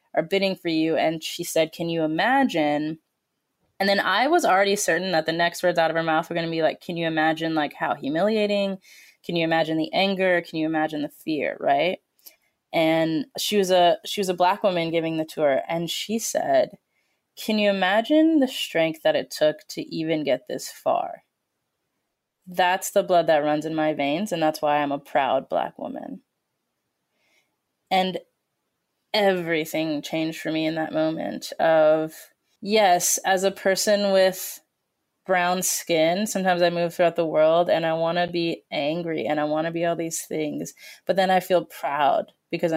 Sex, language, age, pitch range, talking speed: female, English, 20-39, 160-195 Hz, 185 wpm